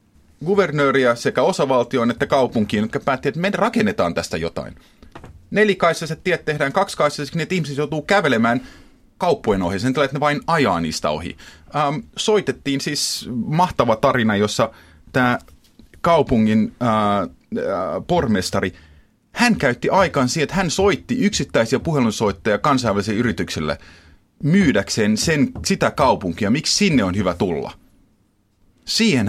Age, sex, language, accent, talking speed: 30-49, male, Finnish, native, 125 wpm